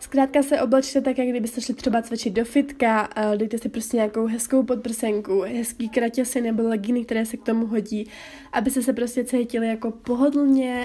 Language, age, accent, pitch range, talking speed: Czech, 20-39, native, 220-255 Hz, 175 wpm